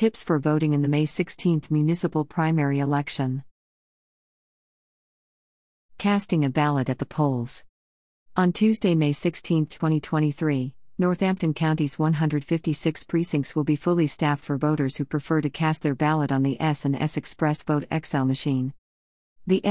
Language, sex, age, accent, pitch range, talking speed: English, female, 50-69, American, 140-165 Hz, 145 wpm